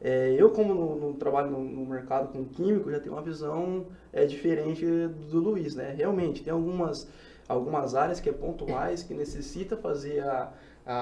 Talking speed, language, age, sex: 165 wpm, Portuguese, 20-39, male